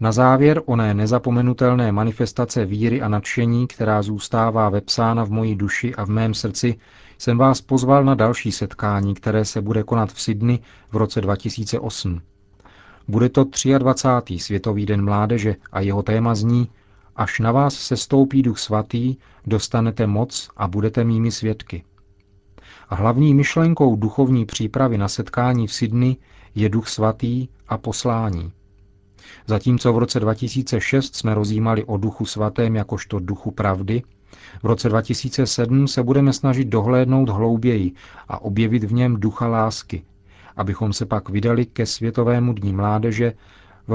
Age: 40-59